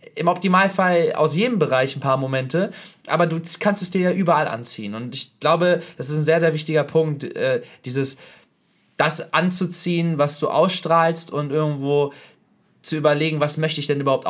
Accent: German